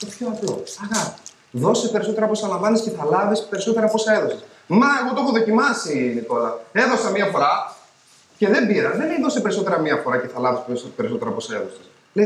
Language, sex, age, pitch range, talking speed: Greek, male, 30-49, 220-285 Hz, 195 wpm